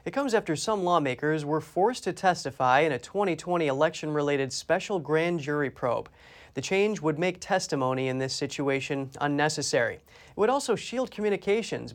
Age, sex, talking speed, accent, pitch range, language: 30-49, male, 155 wpm, American, 145-185 Hz, English